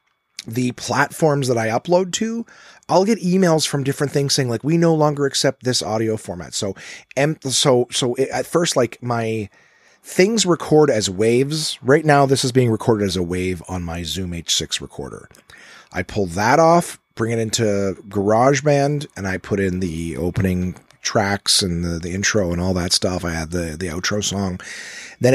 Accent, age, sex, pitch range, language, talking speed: American, 30-49, male, 95-130 Hz, English, 185 wpm